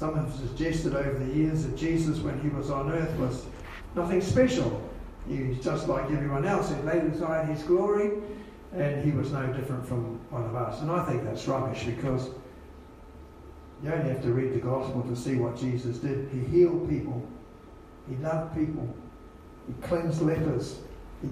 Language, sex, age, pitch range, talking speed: English, male, 60-79, 110-165 Hz, 185 wpm